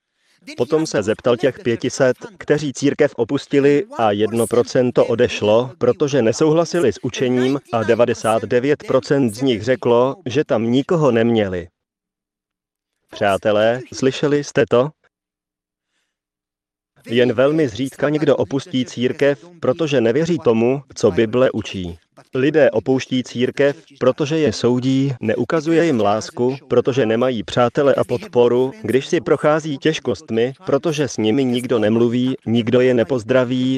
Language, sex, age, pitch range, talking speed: Slovak, male, 30-49, 110-140 Hz, 120 wpm